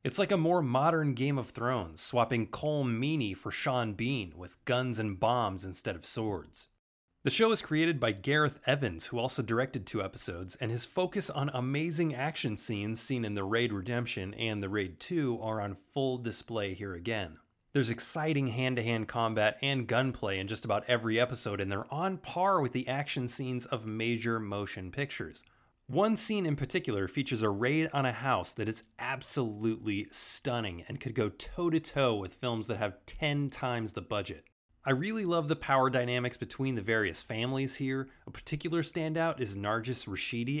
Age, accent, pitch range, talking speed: 30-49, American, 110-140 Hz, 180 wpm